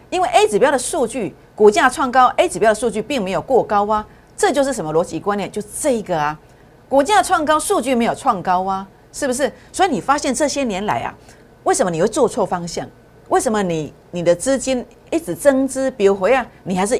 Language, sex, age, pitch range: Chinese, female, 50-69, 180-265 Hz